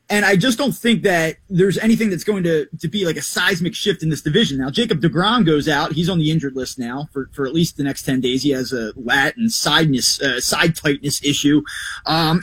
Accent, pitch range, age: American, 165-225 Hz, 20-39